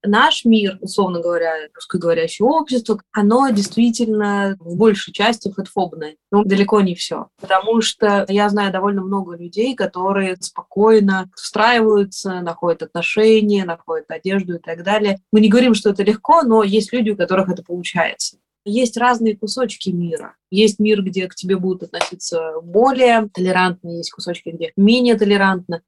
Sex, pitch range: female, 180-215 Hz